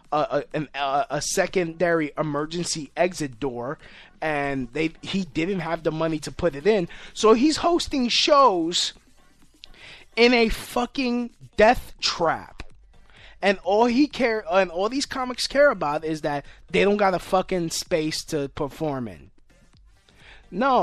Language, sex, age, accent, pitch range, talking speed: English, male, 20-39, American, 155-200 Hz, 140 wpm